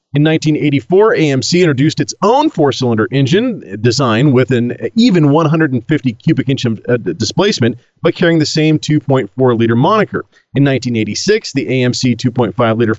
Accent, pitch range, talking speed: American, 120-165 Hz, 130 wpm